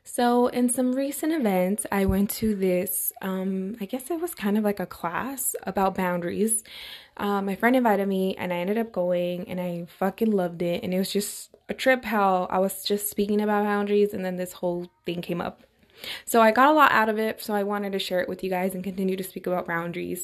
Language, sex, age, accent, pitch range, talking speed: English, female, 20-39, American, 190-245 Hz, 235 wpm